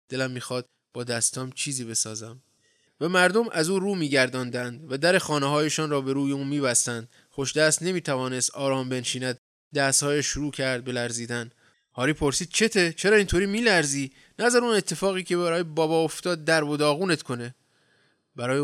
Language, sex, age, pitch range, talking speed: Persian, male, 20-39, 125-160 Hz, 150 wpm